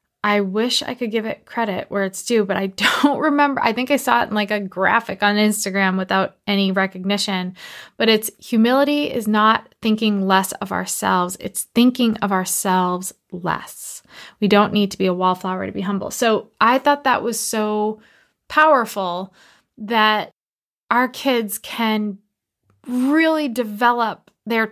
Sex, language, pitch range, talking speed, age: female, English, 200-235 Hz, 160 wpm, 20-39